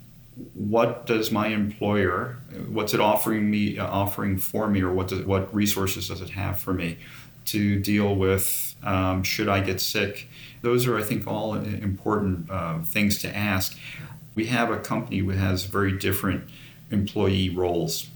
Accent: American